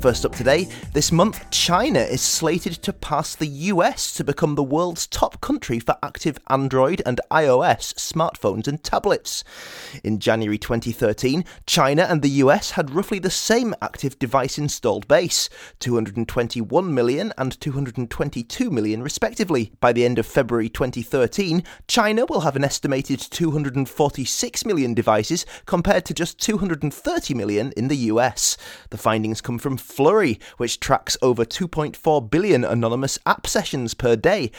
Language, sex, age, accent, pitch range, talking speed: English, male, 30-49, British, 120-170 Hz, 145 wpm